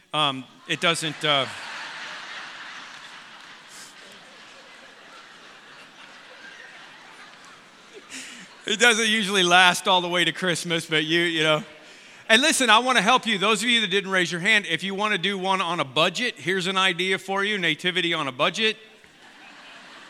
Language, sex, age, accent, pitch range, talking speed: English, male, 40-59, American, 170-205 Hz, 150 wpm